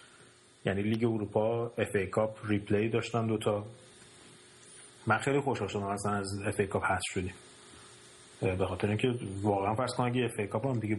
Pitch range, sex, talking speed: 100-125 Hz, male, 145 wpm